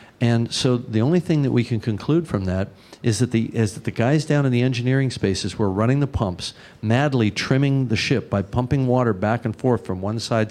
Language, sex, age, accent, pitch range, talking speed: English, male, 50-69, American, 100-125 Hz, 230 wpm